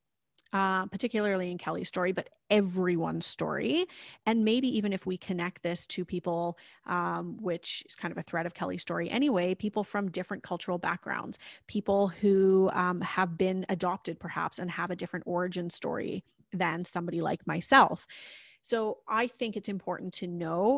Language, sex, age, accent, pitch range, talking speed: English, female, 30-49, American, 175-210 Hz, 165 wpm